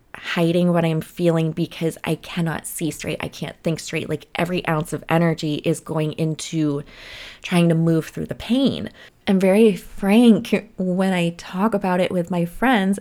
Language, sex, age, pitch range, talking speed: English, female, 20-39, 165-200 Hz, 175 wpm